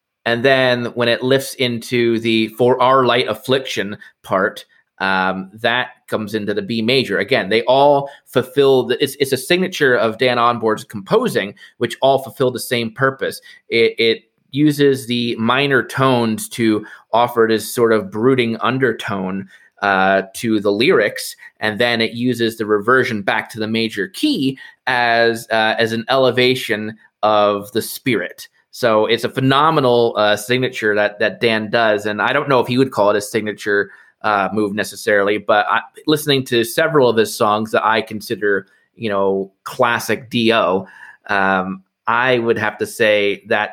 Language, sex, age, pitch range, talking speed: English, male, 30-49, 105-125 Hz, 165 wpm